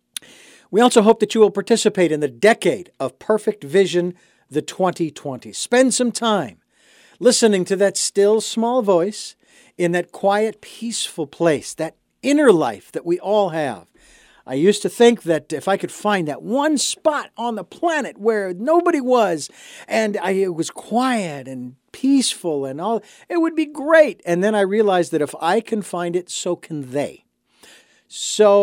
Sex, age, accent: male, 50-69, American